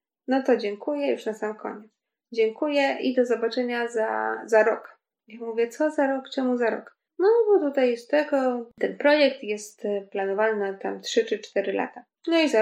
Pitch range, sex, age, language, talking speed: 210-255 Hz, female, 20-39, Polish, 190 wpm